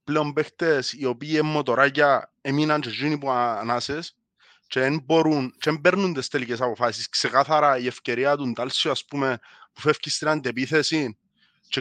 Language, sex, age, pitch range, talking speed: Greek, male, 30-49, 125-165 Hz, 135 wpm